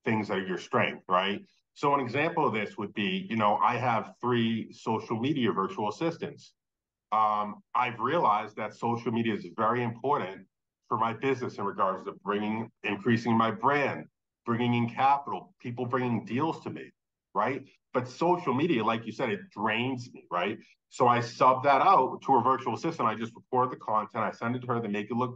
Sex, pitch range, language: male, 115-130 Hz, English